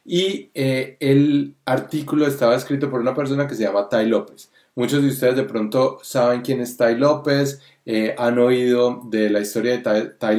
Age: 20-39